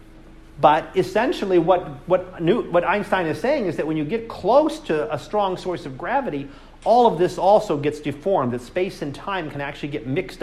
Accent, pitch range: American, 140-190 Hz